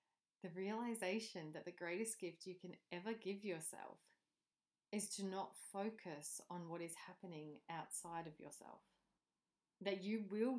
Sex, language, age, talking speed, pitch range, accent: female, English, 30-49, 140 wpm, 160-200 Hz, Australian